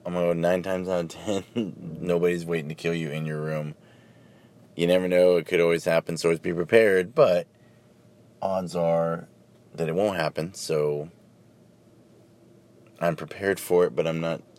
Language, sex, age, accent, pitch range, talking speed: English, male, 30-49, American, 80-100 Hz, 160 wpm